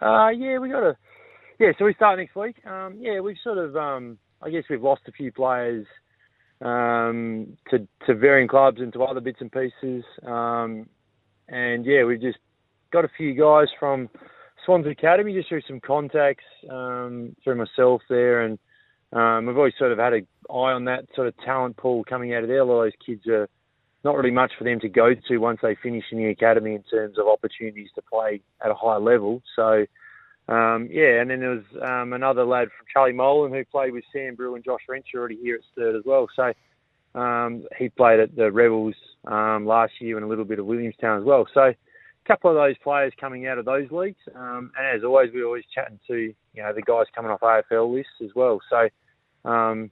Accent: Australian